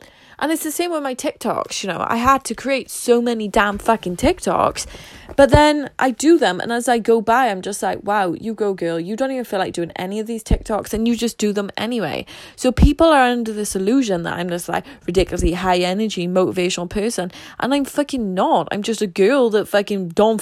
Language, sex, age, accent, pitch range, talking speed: English, female, 10-29, British, 185-245 Hz, 225 wpm